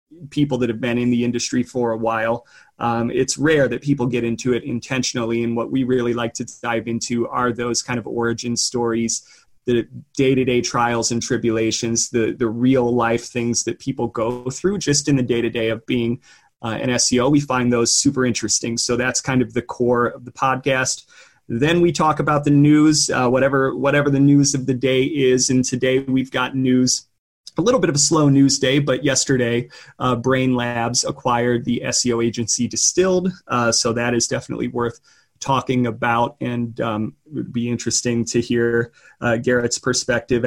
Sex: male